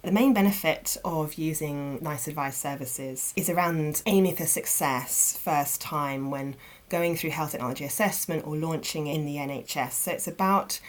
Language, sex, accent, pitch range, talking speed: English, female, British, 140-180 Hz, 160 wpm